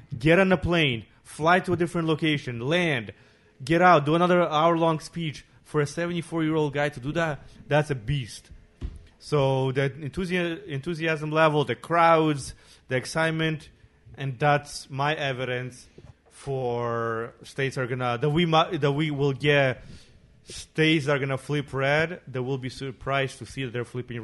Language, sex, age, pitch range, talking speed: English, male, 30-49, 125-155 Hz, 155 wpm